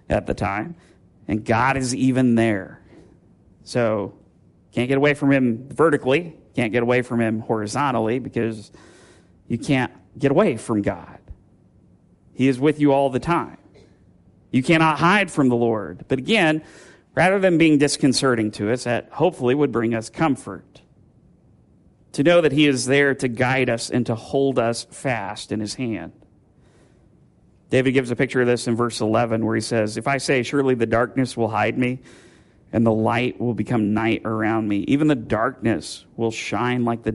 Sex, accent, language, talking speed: male, American, English, 175 wpm